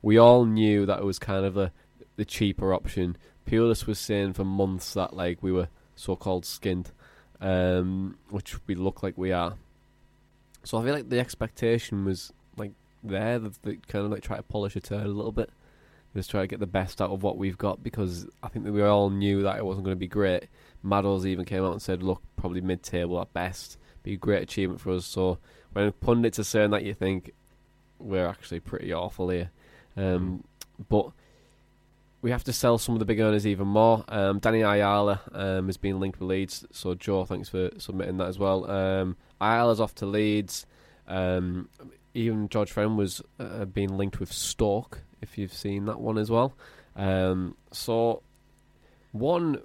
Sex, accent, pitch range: male, British, 95-110 Hz